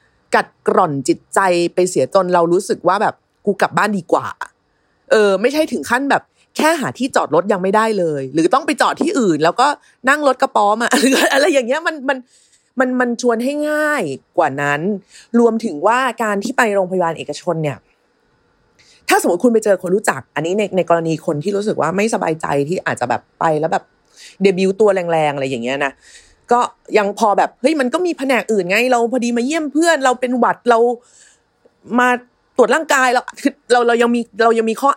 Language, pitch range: Thai, 175-250 Hz